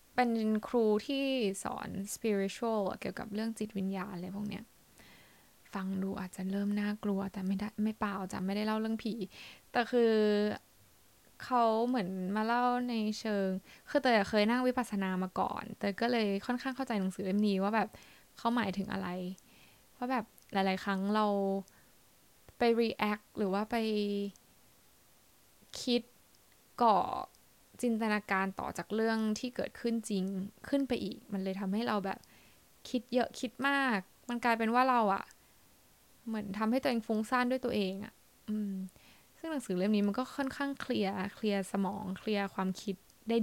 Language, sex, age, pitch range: Thai, female, 10-29, 195-235 Hz